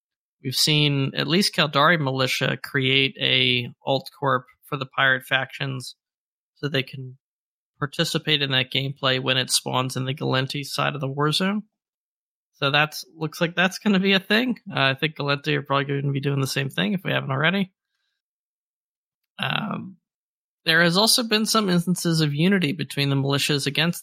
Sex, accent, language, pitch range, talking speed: male, American, English, 135-175 Hz, 180 wpm